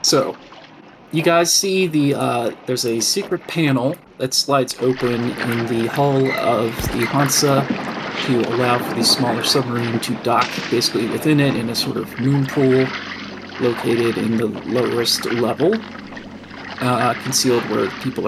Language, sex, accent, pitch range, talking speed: English, male, American, 115-130 Hz, 150 wpm